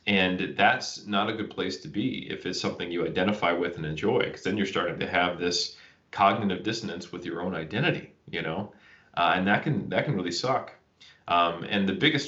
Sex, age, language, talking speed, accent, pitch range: male, 30-49, English, 210 wpm, American, 85-100 Hz